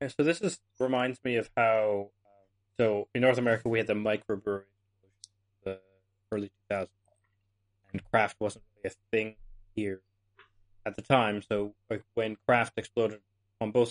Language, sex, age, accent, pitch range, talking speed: English, male, 20-39, American, 100-120 Hz, 160 wpm